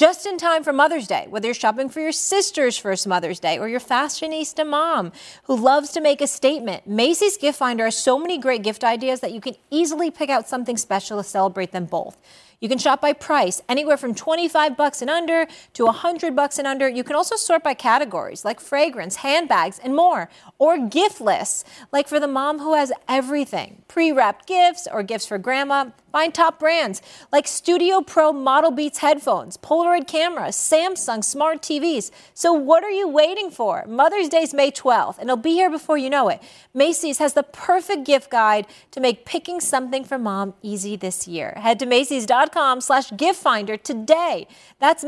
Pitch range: 230-320 Hz